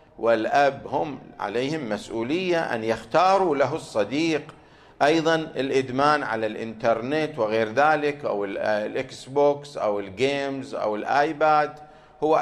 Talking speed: 105 wpm